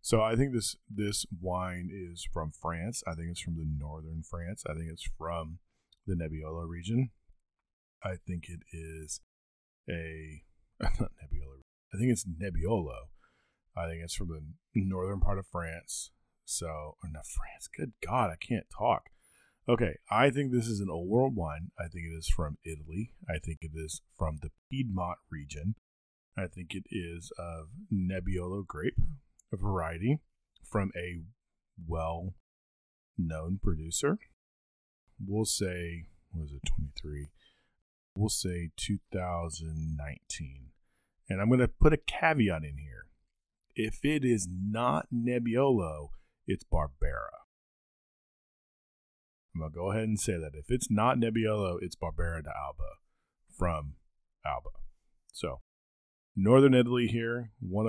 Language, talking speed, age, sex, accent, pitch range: English, 135 wpm, 30-49, male, American, 80-105 Hz